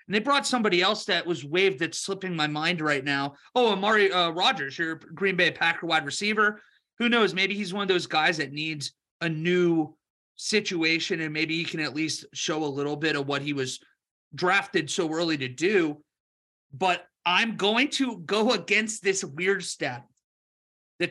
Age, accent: 30-49, American